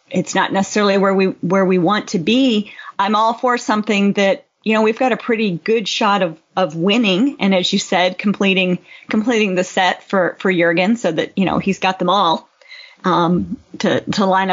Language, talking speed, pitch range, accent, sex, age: English, 200 wpm, 190-240 Hz, American, female, 30-49